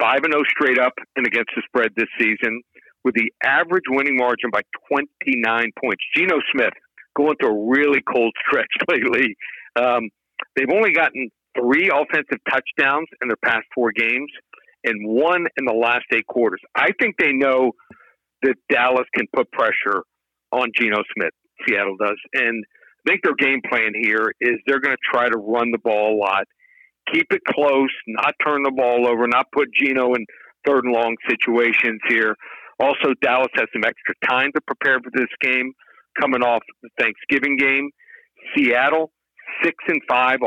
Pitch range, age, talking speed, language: 115-145 Hz, 60-79, 170 wpm, English